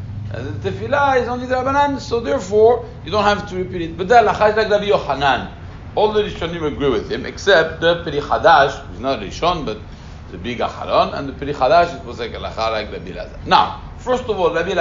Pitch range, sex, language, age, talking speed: 135-220 Hz, male, English, 60-79, 210 wpm